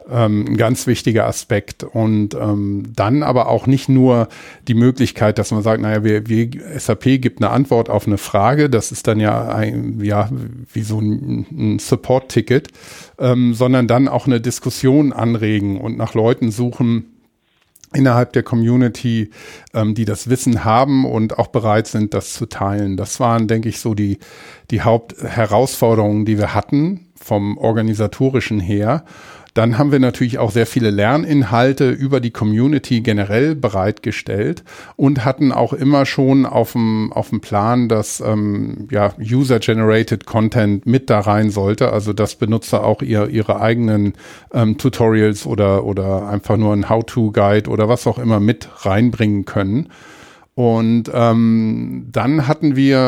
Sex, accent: male, German